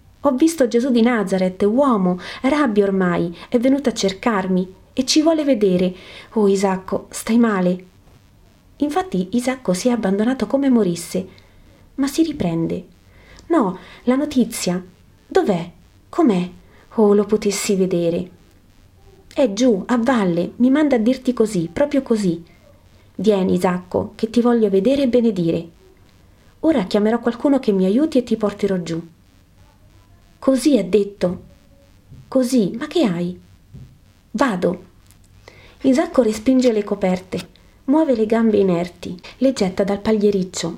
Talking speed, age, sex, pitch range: 130 wpm, 30-49, female, 185-250 Hz